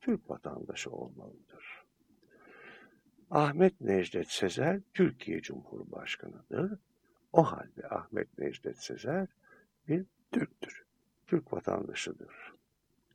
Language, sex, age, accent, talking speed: Turkish, male, 60-79, native, 80 wpm